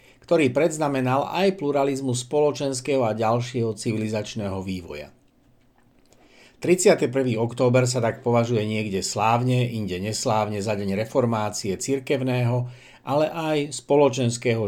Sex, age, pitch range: male, 60-79, 110-135 Hz